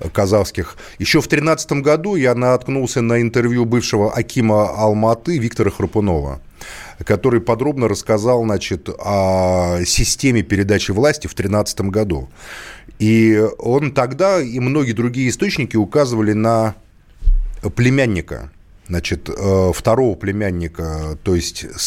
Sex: male